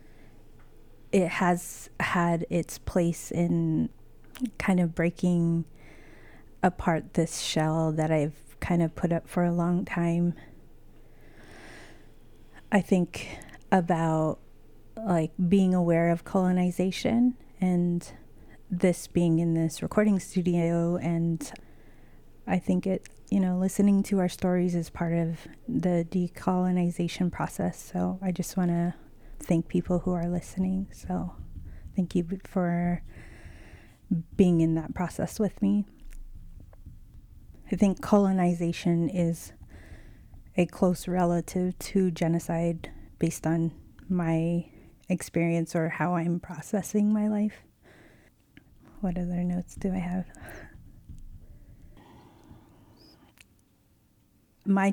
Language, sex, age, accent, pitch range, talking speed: English, female, 30-49, American, 160-185 Hz, 110 wpm